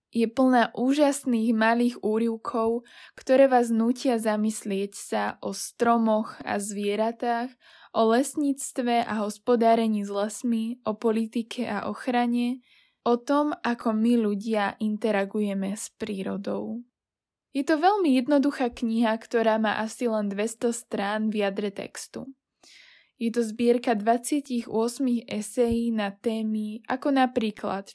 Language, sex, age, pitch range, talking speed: Slovak, female, 10-29, 215-245 Hz, 120 wpm